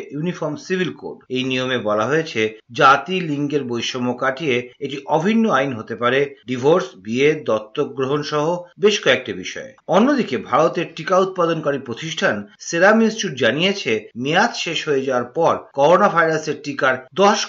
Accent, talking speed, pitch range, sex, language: native, 140 wpm, 135-200 Hz, male, Bengali